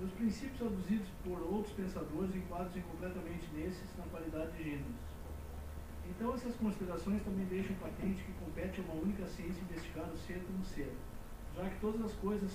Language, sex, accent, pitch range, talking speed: Portuguese, male, Brazilian, 155-200 Hz, 165 wpm